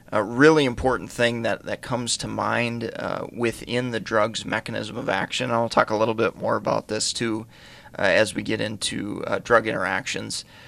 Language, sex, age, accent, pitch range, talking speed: English, male, 30-49, American, 110-125 Hz, 185 wpm